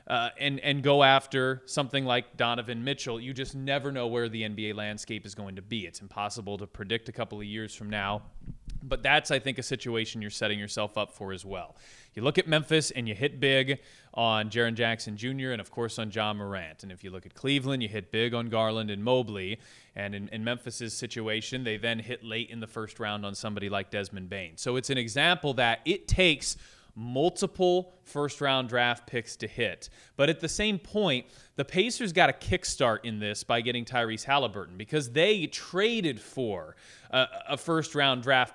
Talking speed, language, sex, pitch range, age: 200 wpm, English, male, 110-145 Hz, 20-39